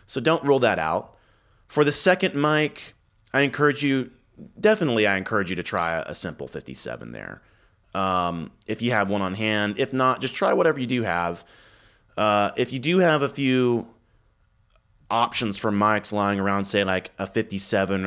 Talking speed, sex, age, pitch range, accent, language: 175 wpm, male, 30-49, 95-120 Hz, American, English